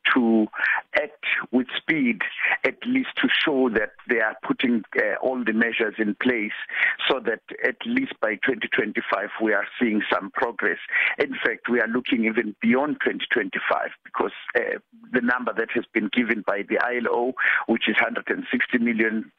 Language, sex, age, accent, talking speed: English, male, 50-69, South African, 160 wpm